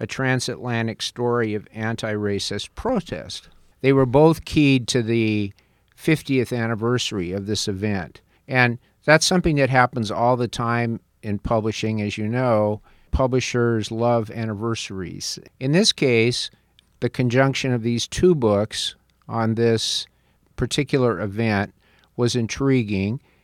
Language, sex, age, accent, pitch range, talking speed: English, male, 50-69, American, 105-125 Hz, 125 wpm